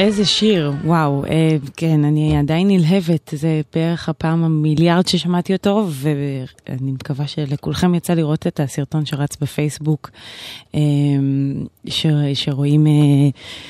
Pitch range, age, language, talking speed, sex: 140-175 Hz, 20-39, Hebrew, 100 wpm, female